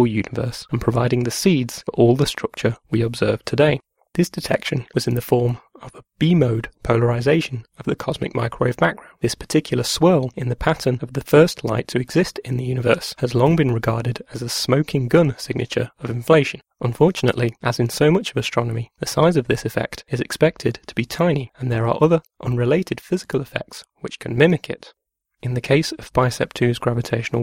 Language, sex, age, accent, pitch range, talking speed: English, male, 30-49, British, 120-155 Hz, 190 wpm